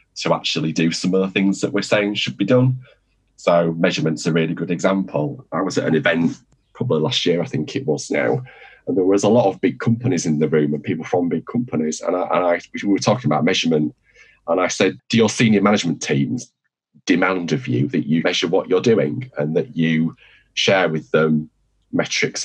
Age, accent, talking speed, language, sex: 30-49, British, 215 wpm, English, male